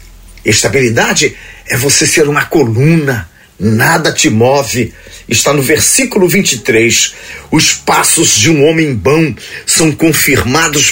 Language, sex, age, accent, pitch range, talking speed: Portuguese, male, 40-59, Brazilian, 115-170 Hz, 115 wpm